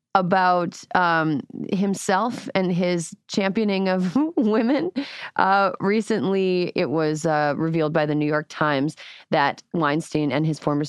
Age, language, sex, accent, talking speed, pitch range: 30-49, English, female, American, 130 wpm, 155-185 Hz